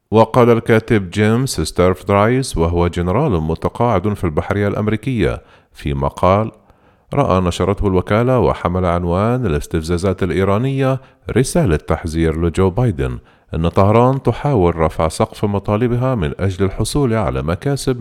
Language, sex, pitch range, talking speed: Arabic, male, 80-120 Hz, 115 wpm